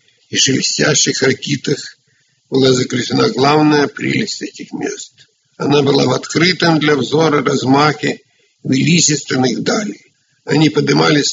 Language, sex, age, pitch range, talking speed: Russian, male, 60-79, 140-160 Hz, 105 wpm